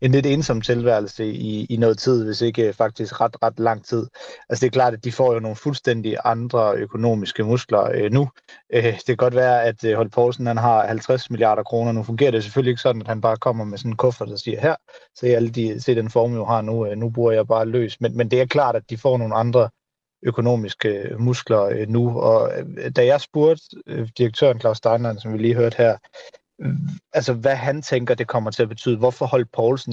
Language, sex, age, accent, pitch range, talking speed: Danish, male, 30-49, native, 110-130 Hz, 230 wpm